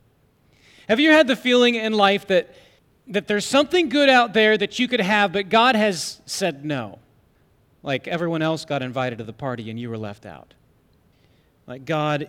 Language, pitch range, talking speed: English, 130-215 Hz, 185 wpm